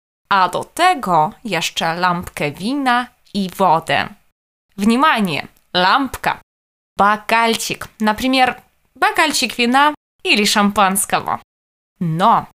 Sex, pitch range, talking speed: female, 200-280 Hz, 75 wpm